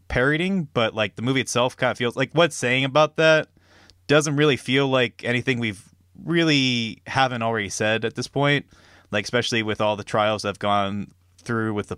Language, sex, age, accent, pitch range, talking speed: English, male, 20-39, American, 100-120 Hz, 190 wpm